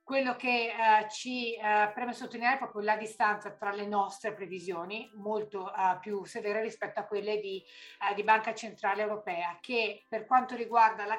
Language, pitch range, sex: Italian, 195-220 Hz, female